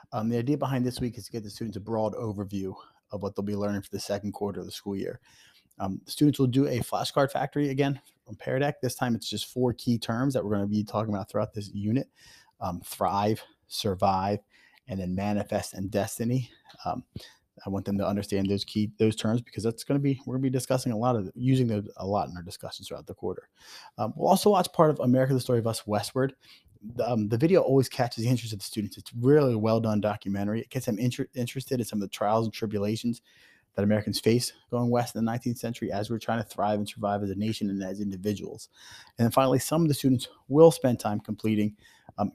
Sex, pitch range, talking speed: male, 100-125 Hz, 240 wpm